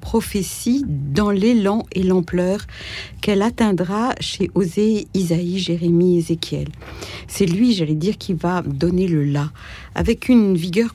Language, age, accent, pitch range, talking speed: French, 60-79, French, 165-220 Hz, 145 wpm